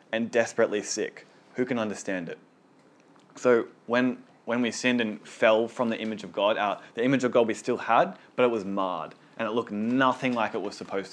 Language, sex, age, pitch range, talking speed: English, male, 20-39, 110-125 Hz, 210 wpm